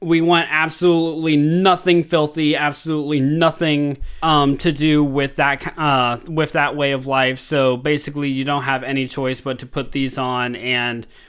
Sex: male